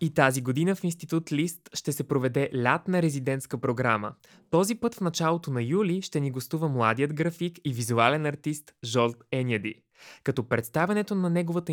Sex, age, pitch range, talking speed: male, 20-39, 120-165 Hz, 165 wpm